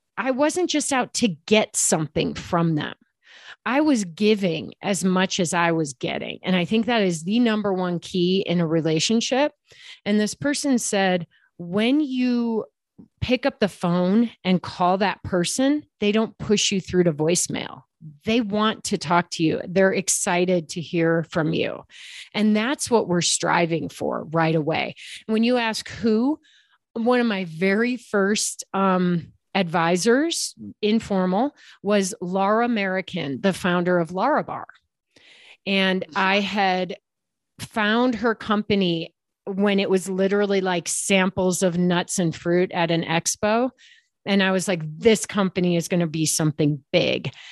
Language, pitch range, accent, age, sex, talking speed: English, 175-220 Hz, American, 30-49, female, 155 wpm